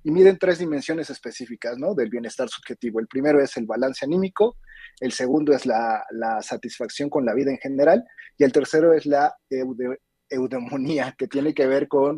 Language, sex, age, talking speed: Spanish, male, 30-49, 180 wpm